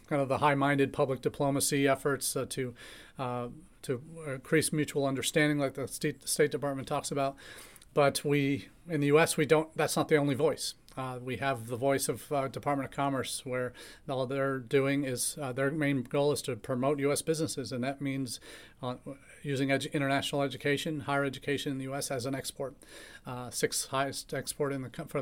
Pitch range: 130-145 Hz